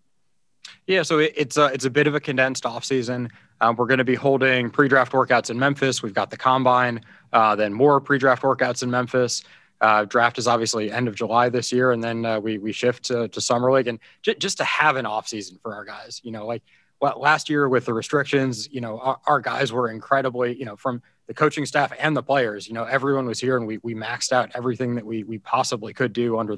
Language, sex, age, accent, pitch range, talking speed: English, male, 20-39, American, 115-130 Hz, 235 wpm